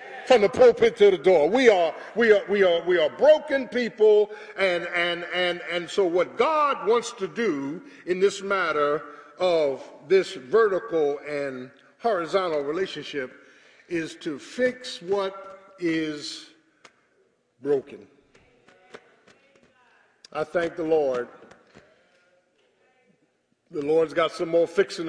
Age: 50-69